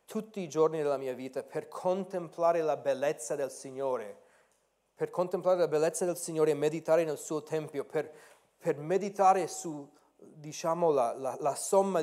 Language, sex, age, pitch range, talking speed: Italian, male, 30-49, 145-180 Hz, 160 wpm